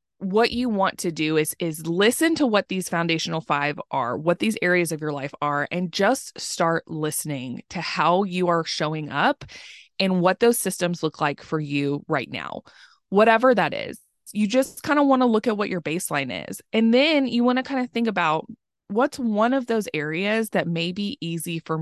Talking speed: 205 wpm